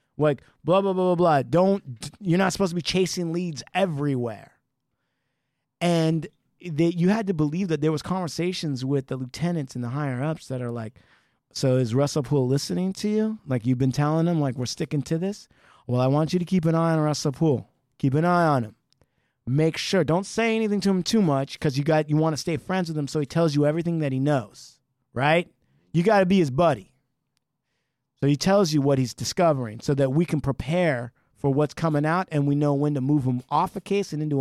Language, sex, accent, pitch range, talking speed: English, male, American, 130-165 Hz, 225 wpm